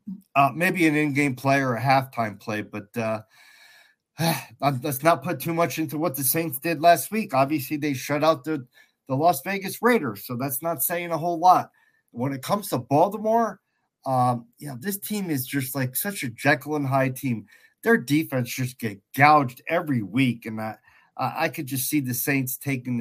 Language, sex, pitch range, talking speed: English, male, 125-165 Hz, 195 wpm